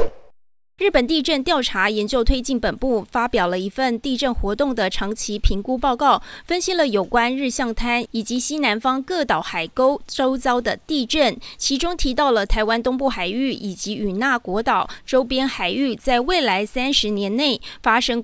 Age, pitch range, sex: 20-39, 220-270 Hz, female